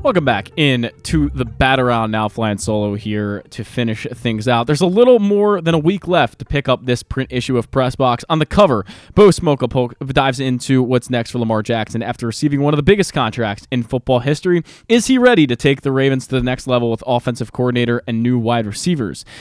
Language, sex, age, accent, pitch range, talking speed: English, male, 20-39, American, 115-155 Hz, 220 wpm